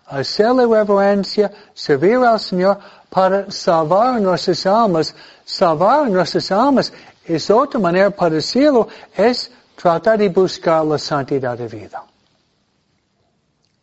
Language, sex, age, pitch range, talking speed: Spanish, male, 60-79, 145-190 Hz, 110 wpm